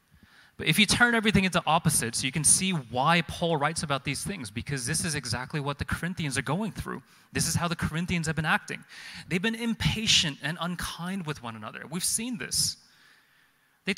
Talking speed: 200 wpm